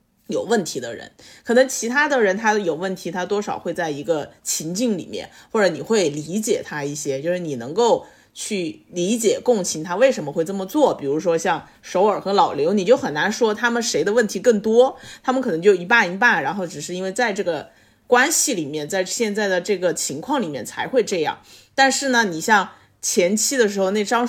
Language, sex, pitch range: Chinese, female, 175-235 Hz